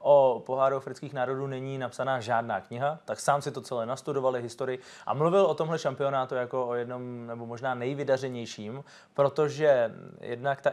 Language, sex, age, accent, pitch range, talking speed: Czech, male, 20-39, native, 120-140 Hz, 160 wpm